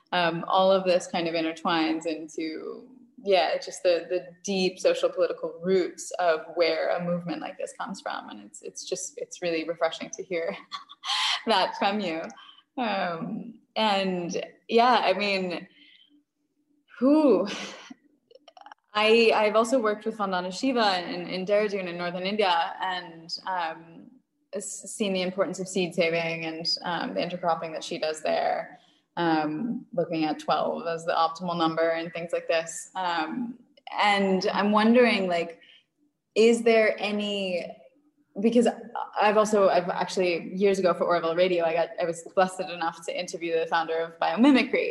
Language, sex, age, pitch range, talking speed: English, female, 20-39, 175-235 Hz, 150 wpm